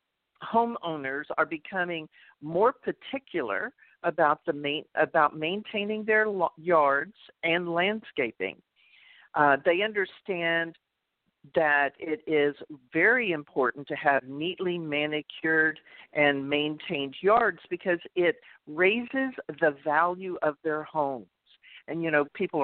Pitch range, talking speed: 150-200 Hz, 110 wpm